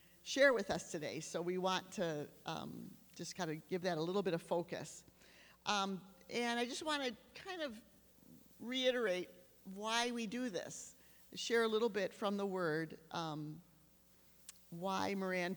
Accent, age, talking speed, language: American, 40-59, 160 wpm, English